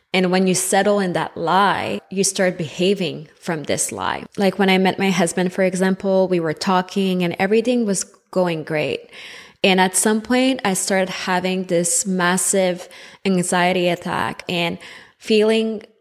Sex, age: female, 20-39